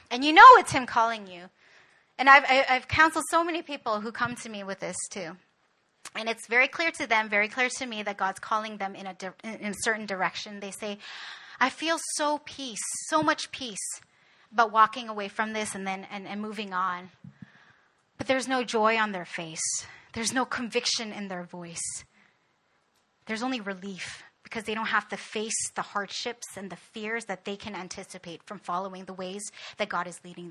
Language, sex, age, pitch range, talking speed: English, female, 30-49, 195-250 Hz, 200 wpm